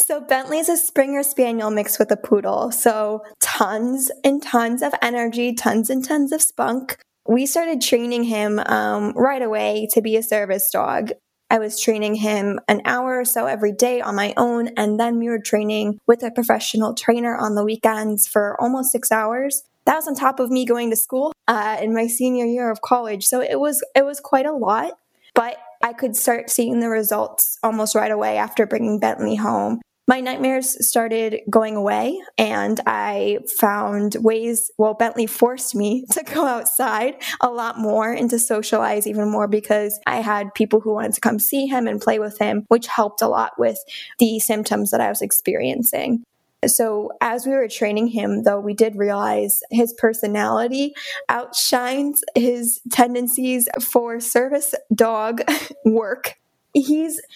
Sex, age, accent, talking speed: female, 10-29, American, 175 wpm